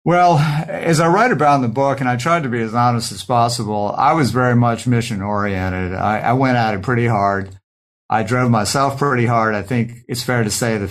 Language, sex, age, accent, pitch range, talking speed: English, male, 50-69, American, 100-125 Hz, 230 wpm